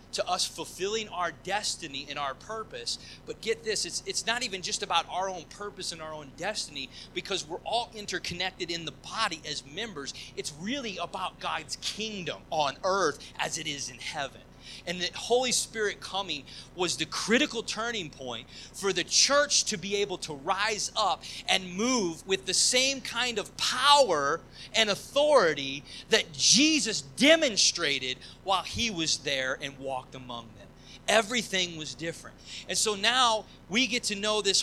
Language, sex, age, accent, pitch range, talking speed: English, male, 30-49, American, 150-210 Hz, 165 wpm